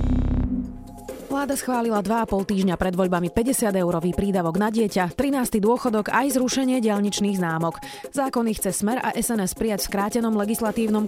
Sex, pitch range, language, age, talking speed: female, 175-235 Hz, Slovak, 30-49, 145 wpm